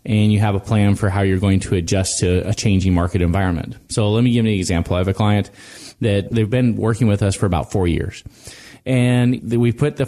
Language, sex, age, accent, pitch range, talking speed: English, male, 30-49, American, 100-125 Hz, 245 wpm